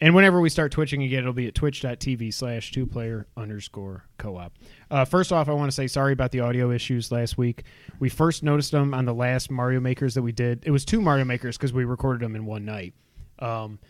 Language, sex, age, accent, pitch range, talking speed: English, male, 20-39, American, 110-140 Hz, 230 wpm